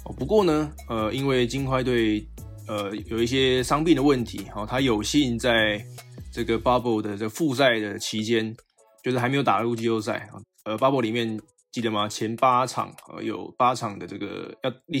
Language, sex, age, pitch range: Chinese, male, 20-39, 110-130 Hz